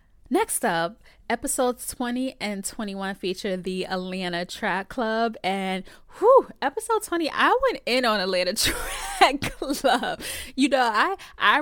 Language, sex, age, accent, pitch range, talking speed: English, female, 10-29, American, 185-255 Hz, 135 wpm